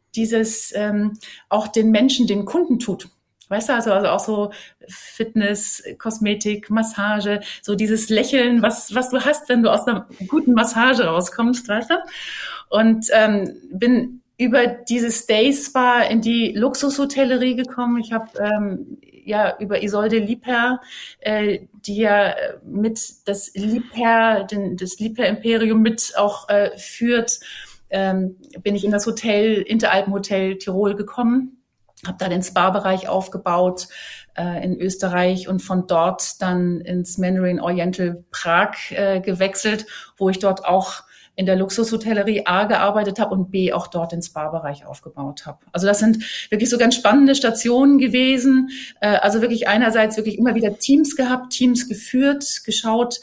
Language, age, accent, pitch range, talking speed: German, 30-49, German, 195-240 Hz, 145 wpm